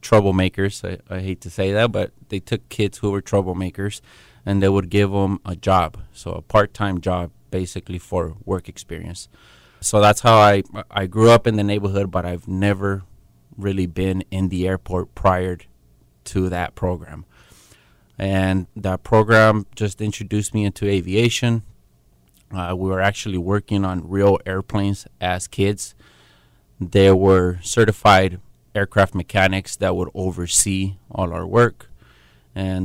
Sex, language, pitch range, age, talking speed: male, English, 90-100 Hz, 30-49, 150 wpm